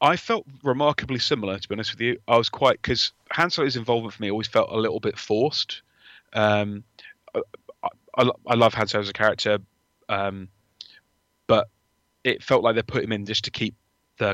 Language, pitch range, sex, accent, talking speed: English, 100-115 Hz, male, British, 195 wpm